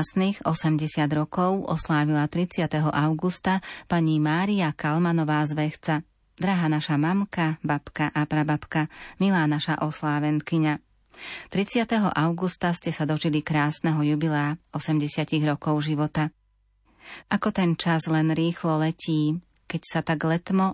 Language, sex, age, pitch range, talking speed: Slovak, female, 30-49, 150-175 Hz, 115 wpm